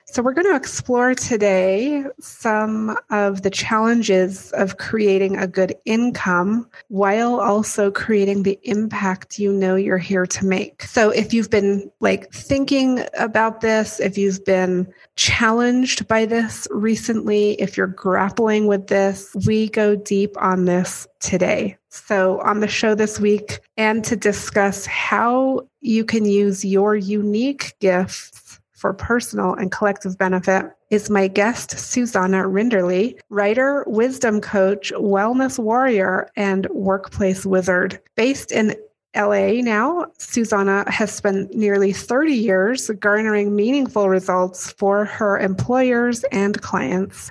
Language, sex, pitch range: English, female, 195-225 Hz